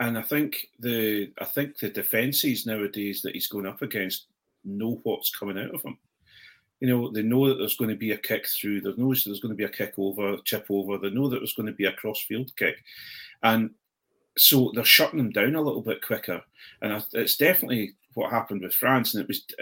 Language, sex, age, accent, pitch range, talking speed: English, male, 40-59, British, 100-130 Hz, 230 wpm